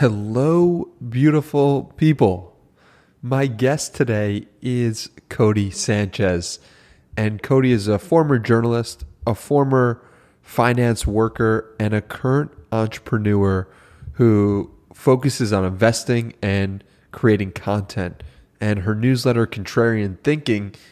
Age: 30-49